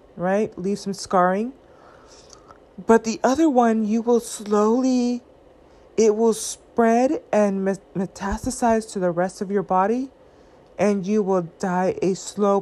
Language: English